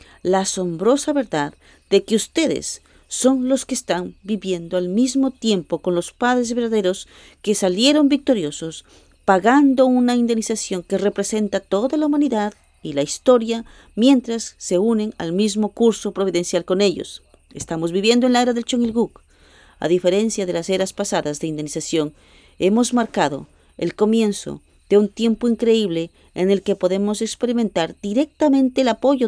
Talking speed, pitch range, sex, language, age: 150 wpm, 180-245 Hz, female, English, 40-59